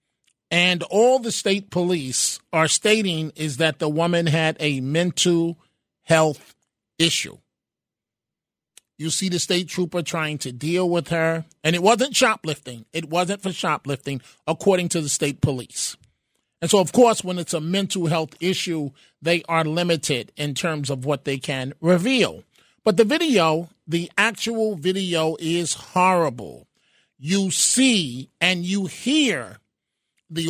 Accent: American